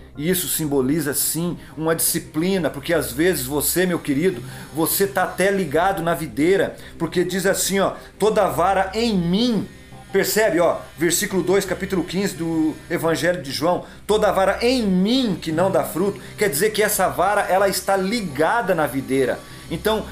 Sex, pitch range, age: male, 155-195 Hz, 40-59